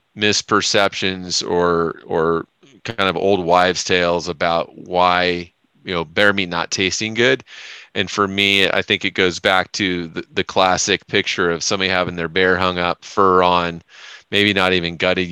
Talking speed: 170 wpm